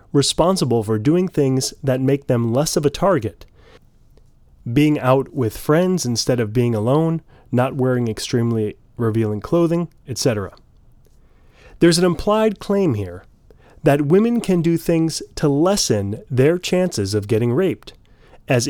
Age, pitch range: 30-49, 115-160 Hz